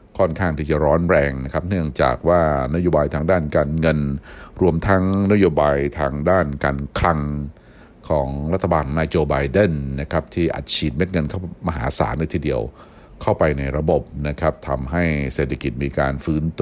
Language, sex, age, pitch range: Thai, male, 60-79, 70-95 Hz